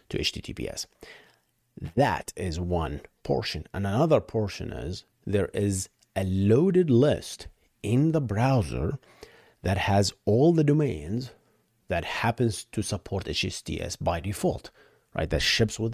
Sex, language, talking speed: male, English, 130 wpm